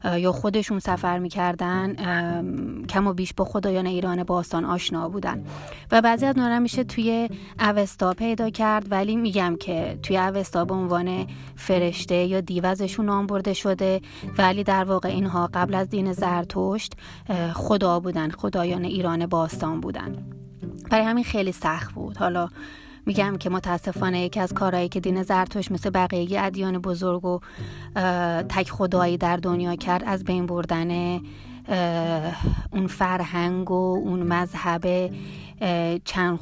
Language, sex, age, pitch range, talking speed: Persian, female, 30-49, 175-200 Hz, 135 wpm